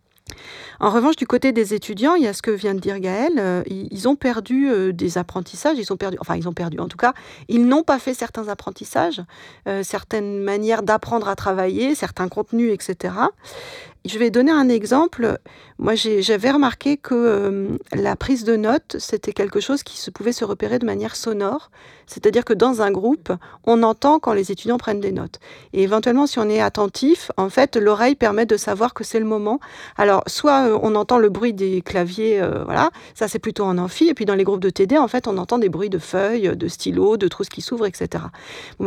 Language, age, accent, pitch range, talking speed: French, 40-59, French, 200-260 Hz, 220 wpm